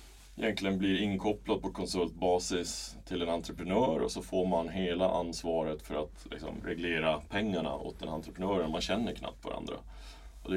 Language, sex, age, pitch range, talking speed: Swedish, male, 30-49, 80-95 Hz, 160 wpm